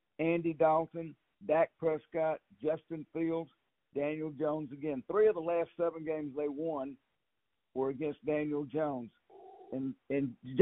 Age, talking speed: 60-79, 125 wpm